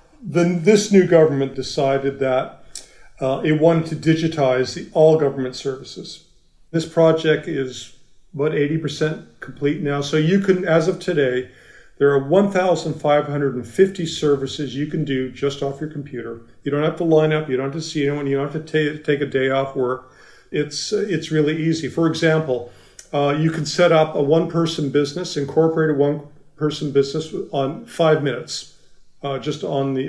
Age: 40-59